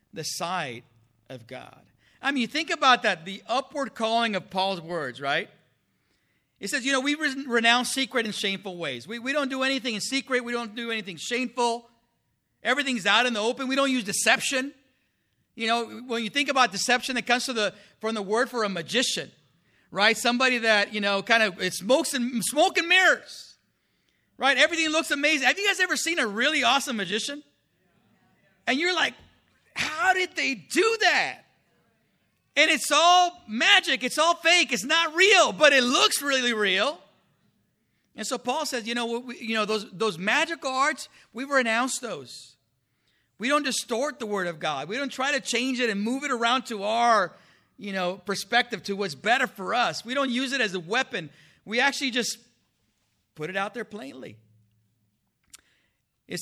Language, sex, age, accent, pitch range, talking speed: English, male, 50-69, American, 205-275 Hz, 185 wpm